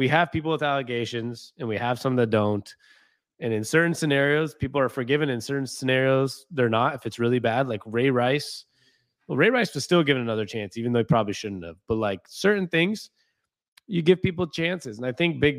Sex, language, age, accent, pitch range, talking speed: male, English, 20-39, American, 115-145 Hz, 215 wpm